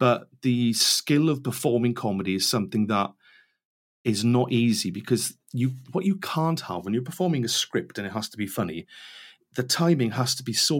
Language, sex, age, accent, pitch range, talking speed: English, male, 40-59, British, 105-130 Hz, 195 wpm